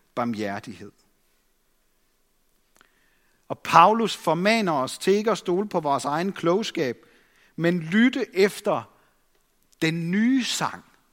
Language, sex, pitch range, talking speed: Danish, male, 150-210 Hz, 100 wpm